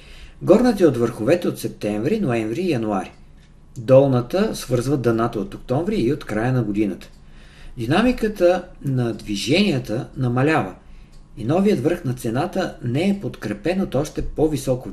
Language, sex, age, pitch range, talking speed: Bulgarian, male, 50-69, 105-160 Hz, 135 wpm